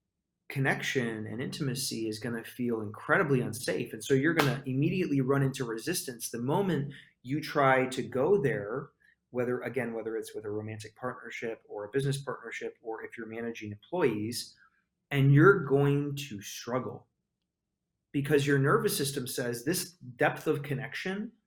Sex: male